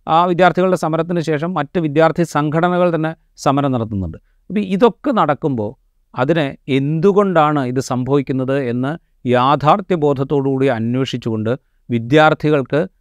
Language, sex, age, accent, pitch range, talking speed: Malayalam, male, 30-49, native, 125-160 Hz, 95 wpm